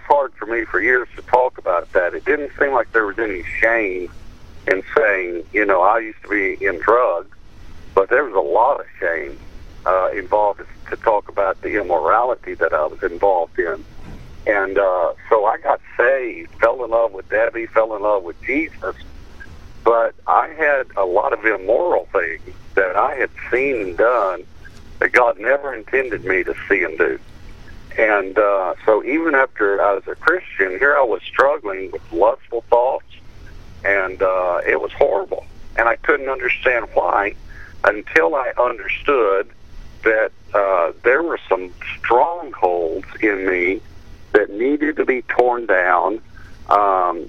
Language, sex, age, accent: English, male, 60-79, American